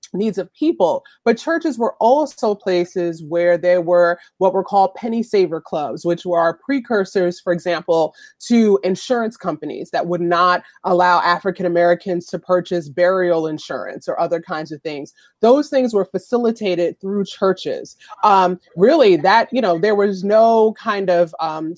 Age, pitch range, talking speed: 30-49, 170-210 Hz, 155 wpm